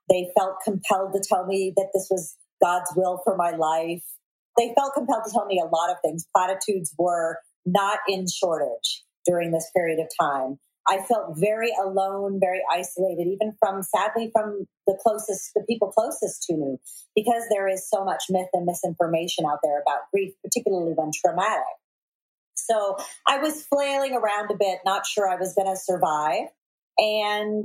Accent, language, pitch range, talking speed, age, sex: American, English, 180-210 Hz, 175 wpm, 40-59, female